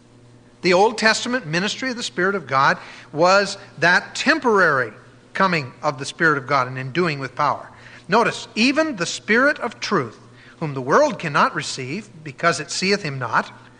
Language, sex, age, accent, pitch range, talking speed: English, male, 50-69, American, 120-200 Hz, 170 wpm